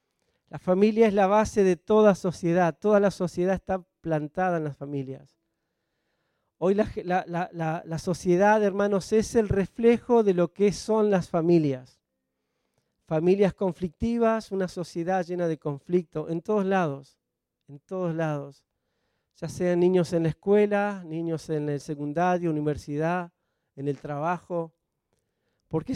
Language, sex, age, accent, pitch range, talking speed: Spanish, male, 40-59, Argentinian, 160-200 Hz, 140 wpm